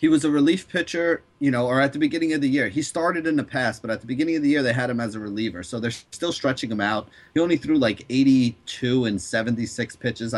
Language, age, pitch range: English, 30-49, 110-135 Hz